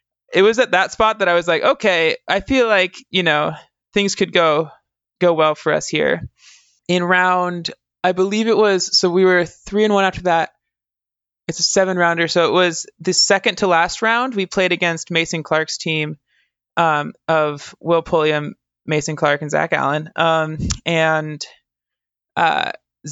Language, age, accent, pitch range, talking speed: English, 20-39, American, 155-185 Hz, 175 wpm